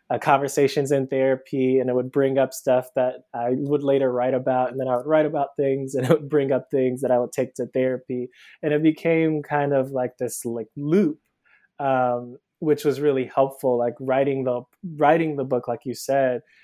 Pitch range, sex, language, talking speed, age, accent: 125-145 Hz, male, English, 210 wpm, 20-39, American